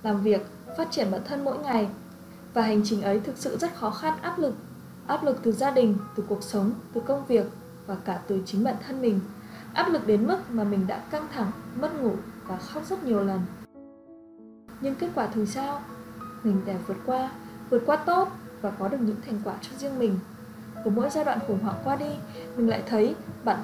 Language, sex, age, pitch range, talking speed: Vietnamese, female, 20-39, 200-275 Hz, 220 wpm